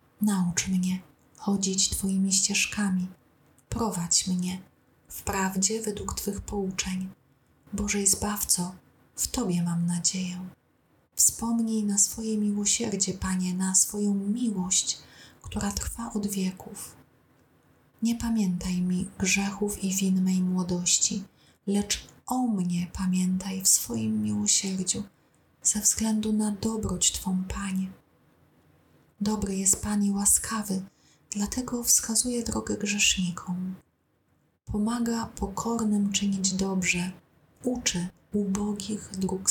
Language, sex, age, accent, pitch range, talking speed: Polish, female, 30-49, native, 185-210 Hz, 100 wpm